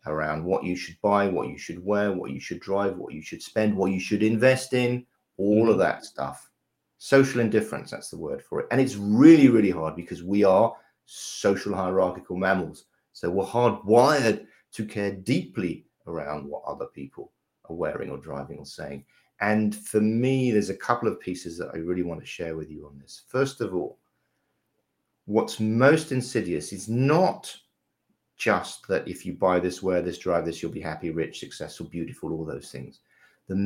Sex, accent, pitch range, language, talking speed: male, British, 90-125 Hz, English, 190 wpm